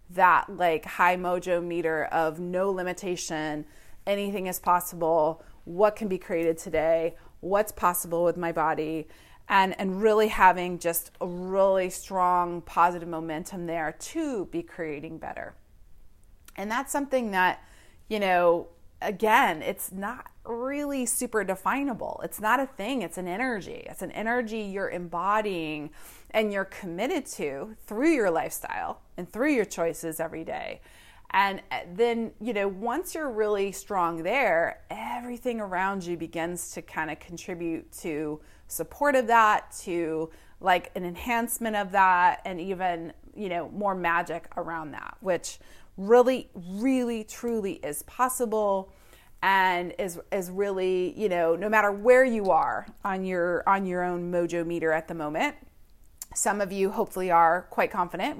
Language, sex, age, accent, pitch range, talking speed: English, female, 30-49, American, 170-210 Hz, 145 wpm